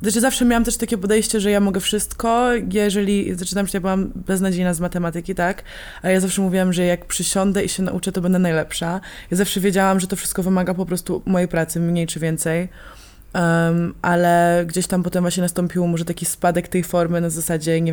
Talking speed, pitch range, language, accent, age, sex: 205 wpm, 170-190 Hz, Polish, native, 20-39, female